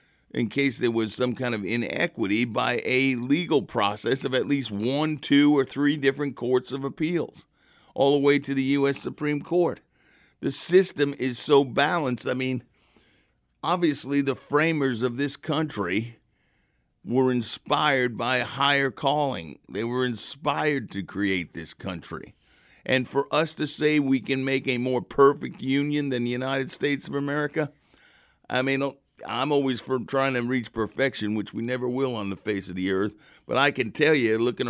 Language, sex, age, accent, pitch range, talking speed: English, male, 50-69, American, 115-140 Hz, 175 wpm